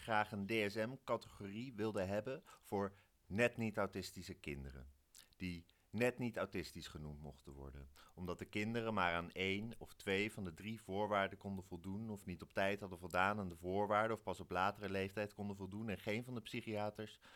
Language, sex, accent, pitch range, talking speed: Dutch, male, Dutch, 85-105 Hz, 175 wpm